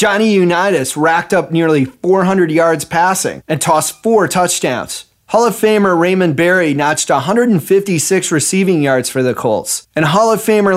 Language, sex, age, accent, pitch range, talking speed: English, male, 30-49, American, 155-195 Hz, 155 wpm